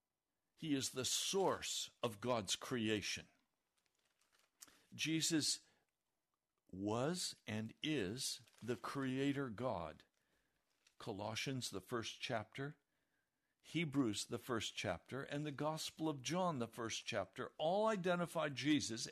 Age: 60-79